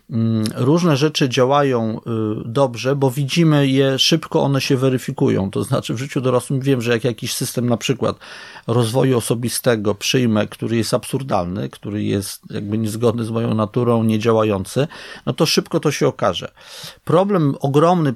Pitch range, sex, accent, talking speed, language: 115-145 Hz, male, native, 150 wpm, Polish